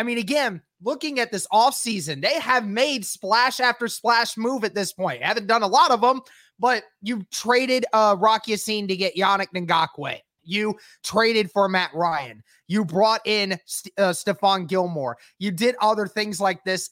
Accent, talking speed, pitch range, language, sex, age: American, 175 wpm, 185-215 Hz, English, male, 20-39